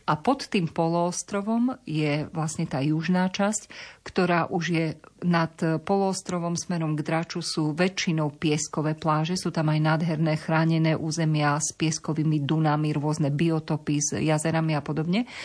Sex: female